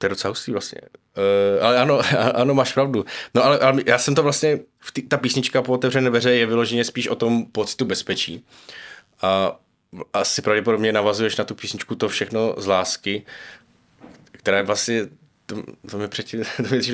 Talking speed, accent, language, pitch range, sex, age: 165 wpm, native, Czech, 105-125 Hz, male, 20-39